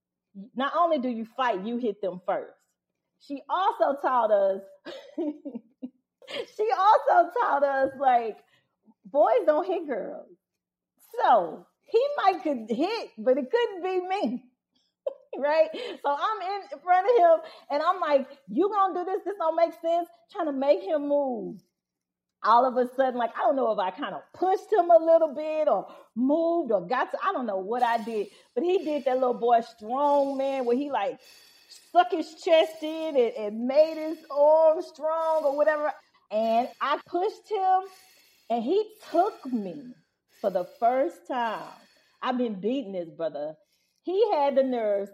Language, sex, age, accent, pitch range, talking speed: English, female, 40-59, American, 245-340 Hz, 170 wpm